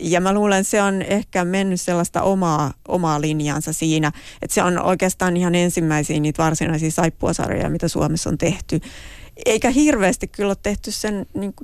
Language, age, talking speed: Finnish, 30-49, 170 wpm